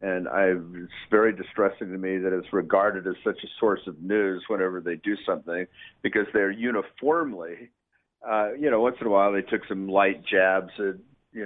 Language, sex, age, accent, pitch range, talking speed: English, male, 50-69, American, 95-120 Hz, 195 wpm